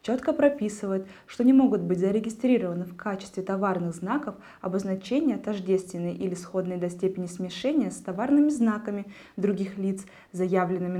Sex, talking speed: female, 130 wpm